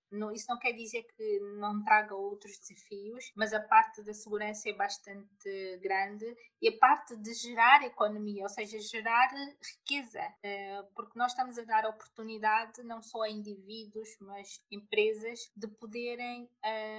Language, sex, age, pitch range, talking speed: Portuguese, female, 20-39, 210-235 Hz, 145 wpm